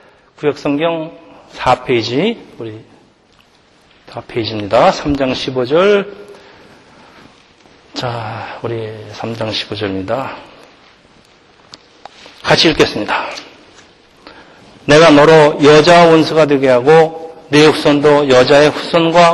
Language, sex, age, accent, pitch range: Korean, male, 40-59, native, 140-165 Hz